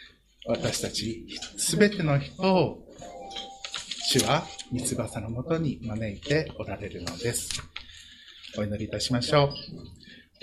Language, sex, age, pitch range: Japanese, male, 60-79, 115-150 Hz